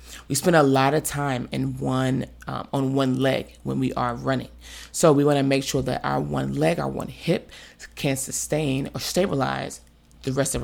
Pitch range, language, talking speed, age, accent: 125-150 Hz, English, 205 wpm, 20-39, American